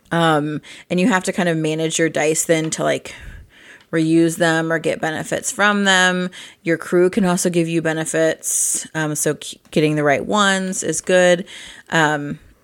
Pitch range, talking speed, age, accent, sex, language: 160-205 Hz, 170 wpm, 30-49, American, female, English